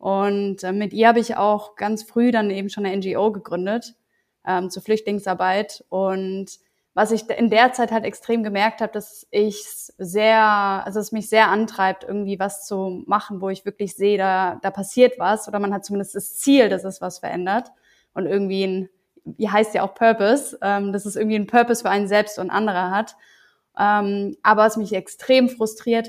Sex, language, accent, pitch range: female, German, German, 195-230 Hz